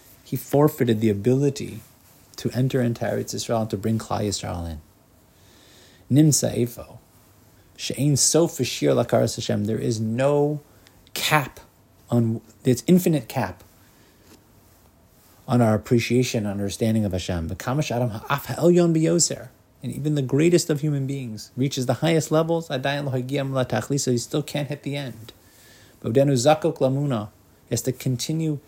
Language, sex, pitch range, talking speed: English, male, 110-140 Hz, 140 wpm